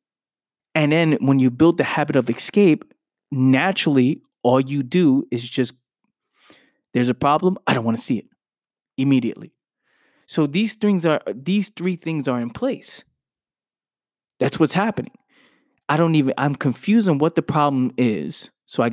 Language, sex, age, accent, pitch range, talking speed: English, male, 20-39, American, 125-155 Hz, 160 wpm